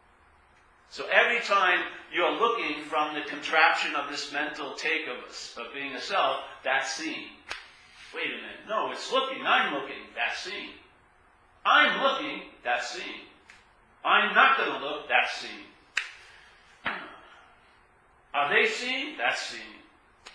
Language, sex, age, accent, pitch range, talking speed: English, male, 40-59, American, 145-225 Hz, 135 wpm